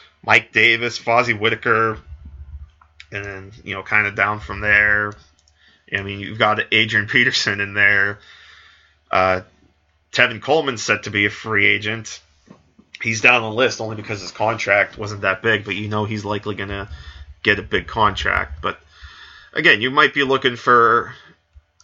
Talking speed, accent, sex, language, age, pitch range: 160 wpm, American, male, English, 20-39, 80-115 Hz